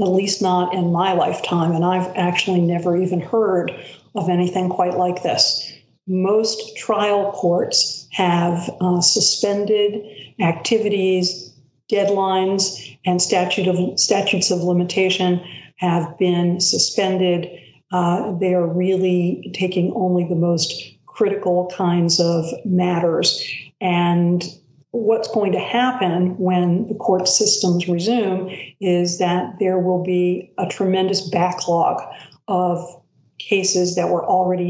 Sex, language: female, English